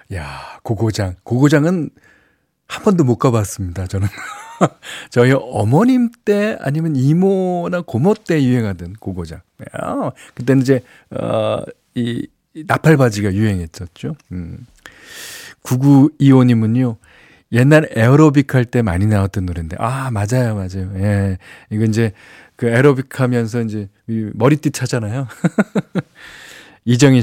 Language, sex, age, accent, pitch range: Korean, male, 40-59, native, 110-155 Hz